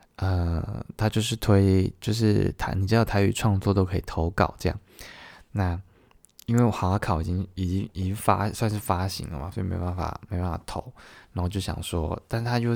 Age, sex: 20-39, male